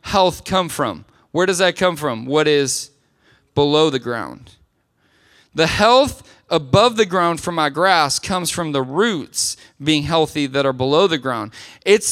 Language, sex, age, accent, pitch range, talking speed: English, male, 20-39, American, 160-230 Hz, 165 wpm